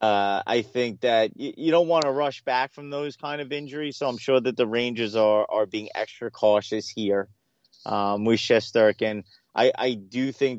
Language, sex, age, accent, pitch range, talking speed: English, male, 30-49, American, 105-125 Hz, 200 wpm